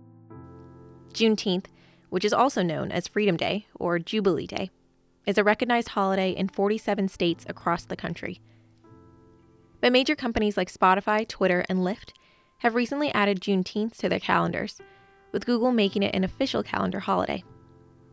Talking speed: 145 wpm